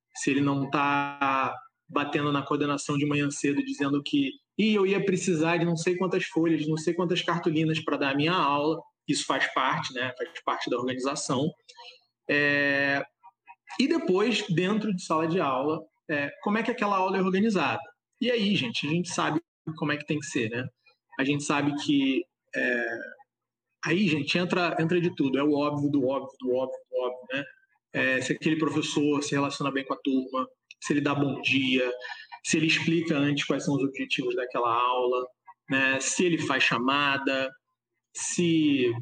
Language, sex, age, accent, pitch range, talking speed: Portuguese, male, 20-39, Brazilian, 140-190 Hz, 175 wpm